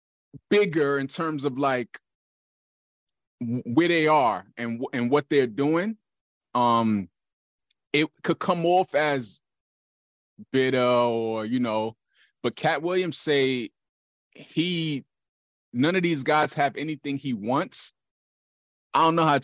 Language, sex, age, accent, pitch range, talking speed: English, male, 20-39, American, 125-170 Hz, 125 wpm